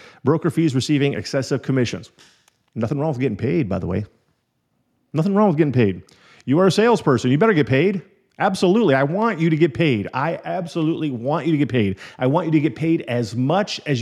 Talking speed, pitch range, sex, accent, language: 210 wpm, 120-150 Hz, male, American, English